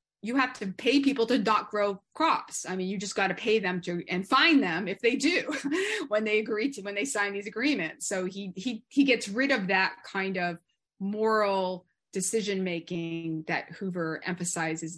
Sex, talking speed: female, 190 wpm